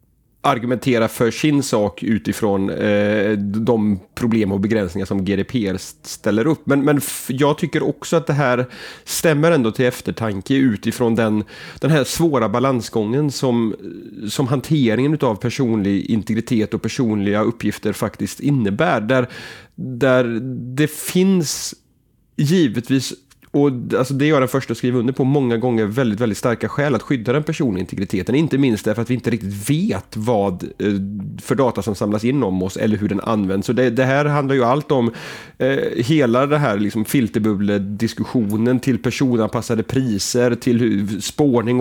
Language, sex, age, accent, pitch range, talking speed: Swedish, male, 30-49, native, 105-135 Hz, 155 wpm